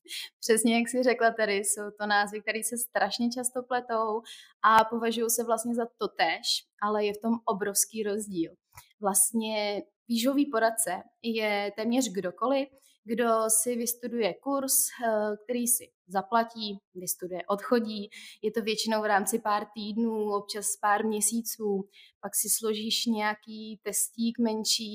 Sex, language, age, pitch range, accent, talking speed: female, Czech, 20-39, 195-230 Hz, native, 135 wpm